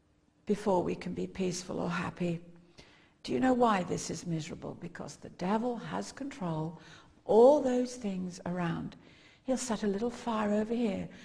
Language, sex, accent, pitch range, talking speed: English, female, British, 185-230 Hz, 160 wpm